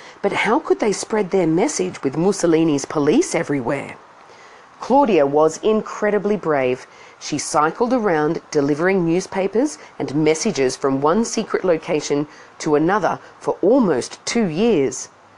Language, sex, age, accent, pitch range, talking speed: English, female, 40-59, Australian, 150-220 Hz, 125 wpm